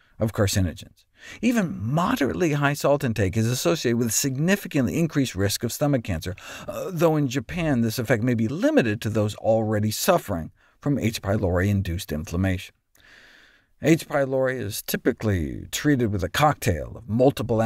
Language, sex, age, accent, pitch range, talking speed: English, male, 50-69, American, 100-150 Hz, 145 wpm